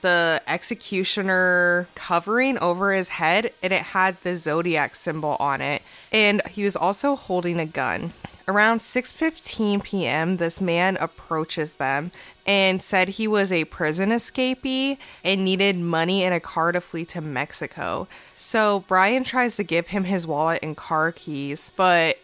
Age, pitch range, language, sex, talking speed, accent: 20-39, 160-195 Hz, English, female, 155 wpm, American